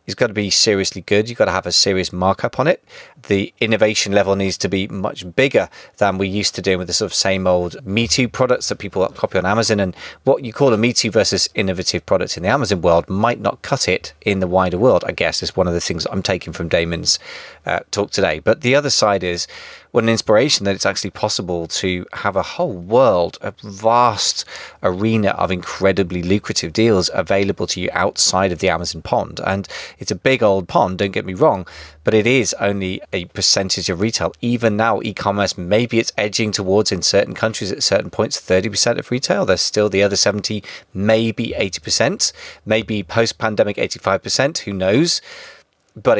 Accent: British